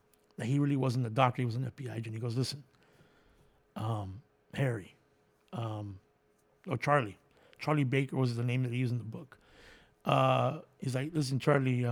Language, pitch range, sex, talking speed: English, 130-160 Hz, male, 175 wpm